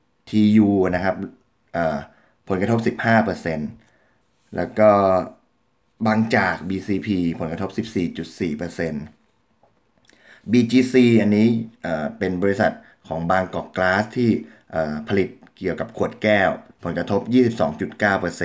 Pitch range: 90-115 Hz